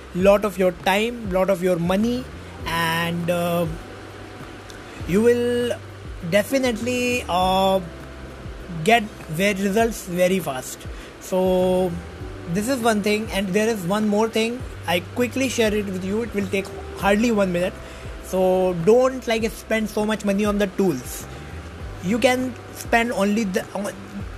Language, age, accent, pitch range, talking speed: English, 20-39, Indian, 185-225 Hz, 140 wpm